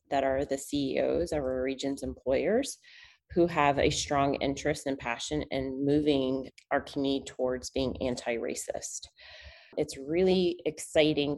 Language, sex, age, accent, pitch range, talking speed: English, female, 30-49, American, 135-165 Hz, 130 wpm